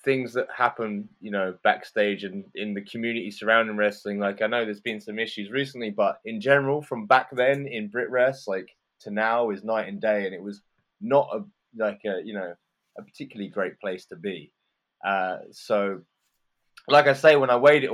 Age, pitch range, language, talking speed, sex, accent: 20-39, 105-135 Hz, English, 195 wpm, male, British